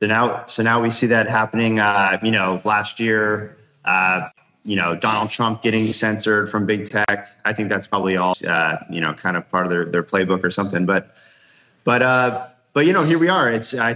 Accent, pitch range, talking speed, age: American, 95-120 Hz, 220 wpm, 30-49